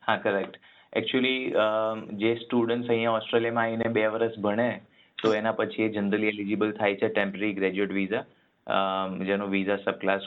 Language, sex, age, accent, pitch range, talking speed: Gujarati, male, 20-39, native, 95-105 Hz, 150 wpm